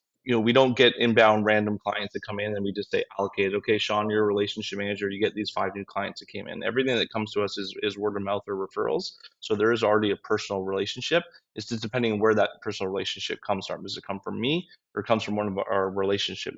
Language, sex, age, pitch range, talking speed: English, male, 20-39, 100-110 Hz, 265 wpm